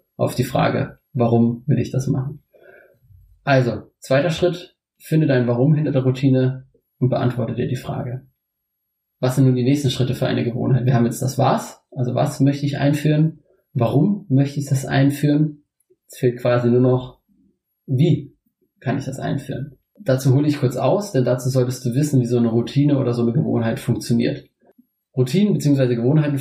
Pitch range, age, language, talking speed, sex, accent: 125-145 Hz, 30-49, German, 175 wpm, male, German